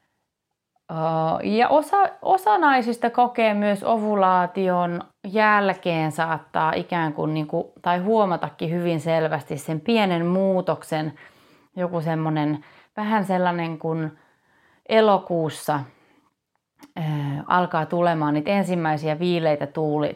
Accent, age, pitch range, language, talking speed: native, 30-49, 150-180 Hz, Finnish, 100 wpm